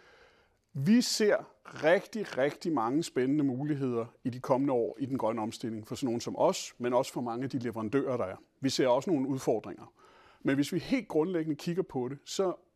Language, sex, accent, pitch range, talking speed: Danish, male, native, 130-180 Hz, 200 wpm